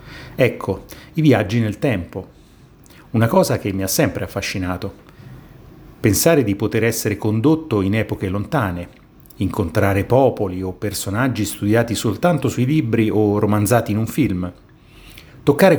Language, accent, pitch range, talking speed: Italian, native, 95-125 Hz, 130 wpm